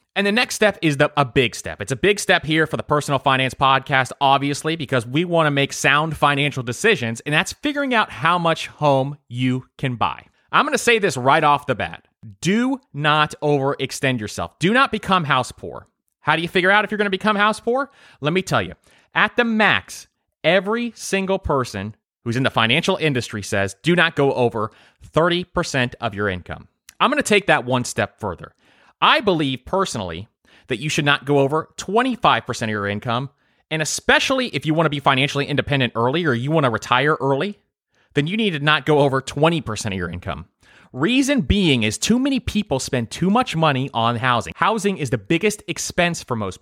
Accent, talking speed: American, 200 wpm